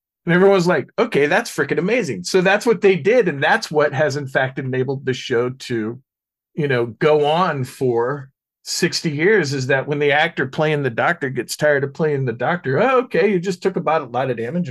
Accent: American